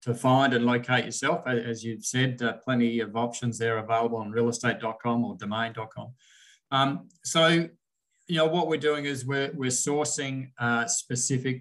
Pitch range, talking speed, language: 115-135 Hz, 155 wpm, English